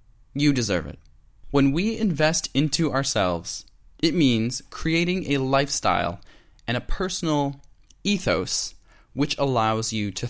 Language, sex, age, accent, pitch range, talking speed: English, male, 20-39, American, 105-145 Hz, 120 wpm